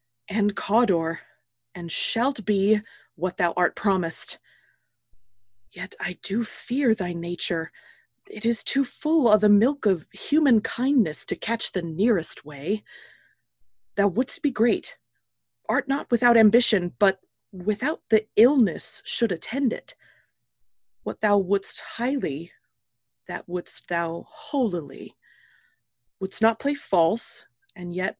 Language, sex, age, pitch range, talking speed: English, female, 20-39, 170-225 Hz, 125 wpm